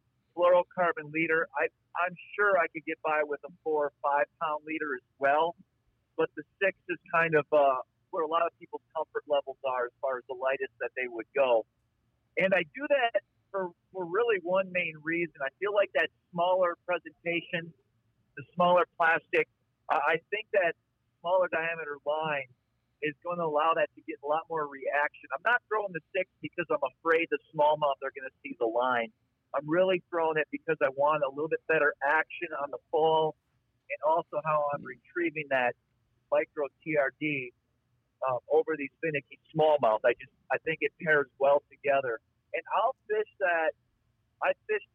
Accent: American